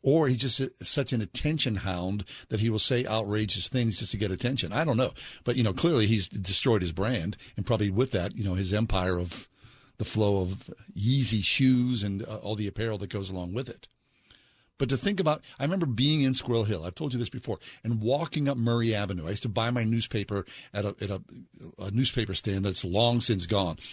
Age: 50-69